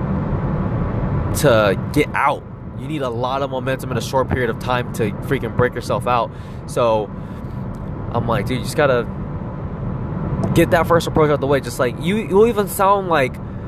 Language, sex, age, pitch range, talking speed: English, male, 20-39, 125-160 Hz, 180 wpm